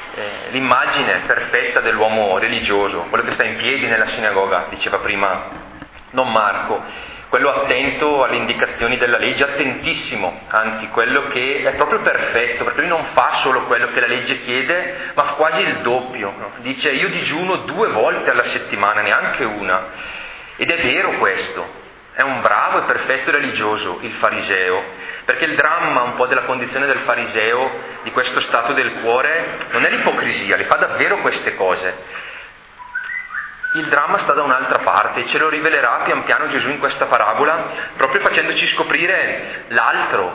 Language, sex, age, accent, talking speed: Italian, male, 30-49, native, 155 wpm